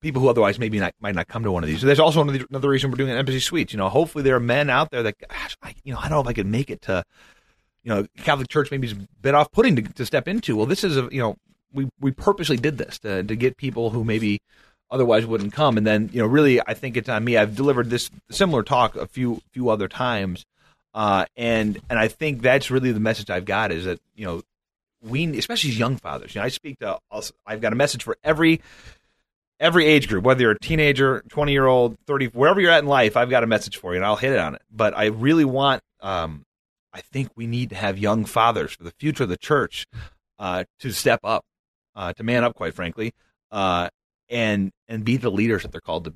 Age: 30-49